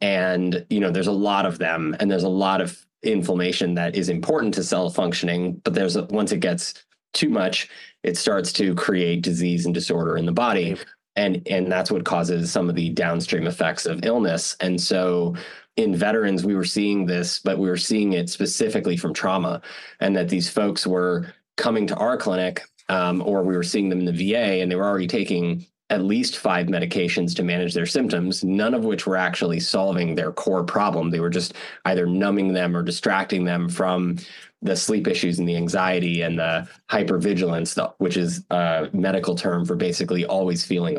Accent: American